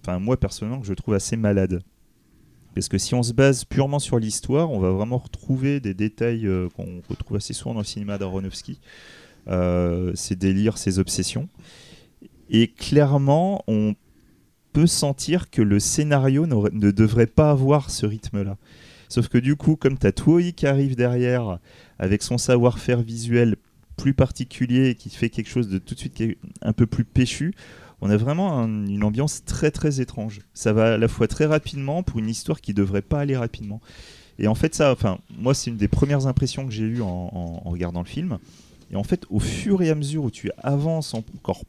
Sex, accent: male, French